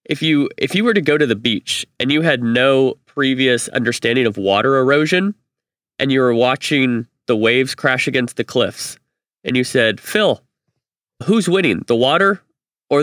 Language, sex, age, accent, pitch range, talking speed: English, male, 30-49, American, 120-145 Hz, 175 wpm